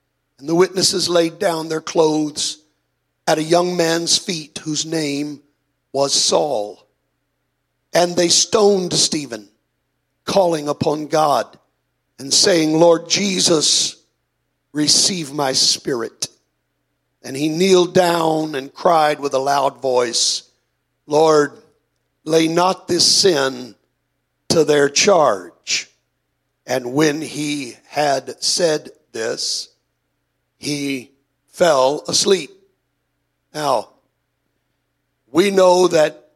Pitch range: 145-175 Hz